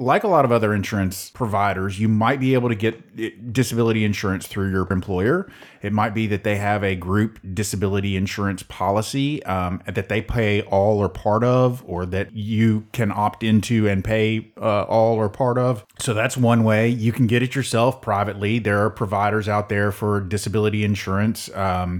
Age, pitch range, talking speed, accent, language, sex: 30-49, 105-125 Hz, 190 wpm, American, English, male